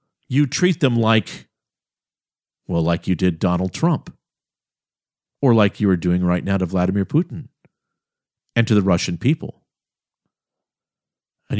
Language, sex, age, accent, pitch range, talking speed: English, male, 50-69, American, 105-170 Hz, 135 wpm